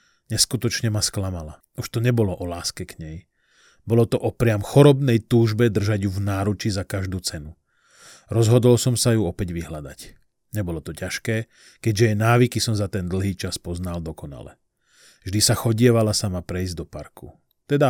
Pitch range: 90-115 Hz